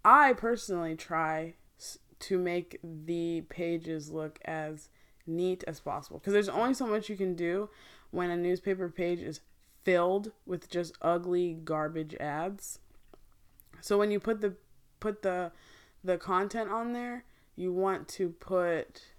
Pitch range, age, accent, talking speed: 165-195 Hz, 20-39, American, 145 wpm